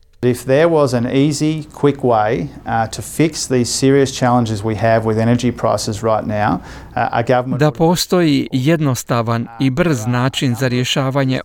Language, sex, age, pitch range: Croatian, male, 40-59, 125-155 Hz